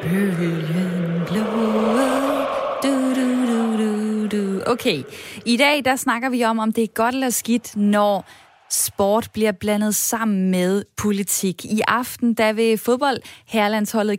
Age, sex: 20-39, female